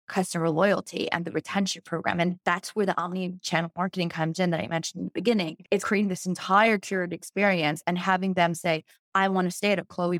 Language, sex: English, female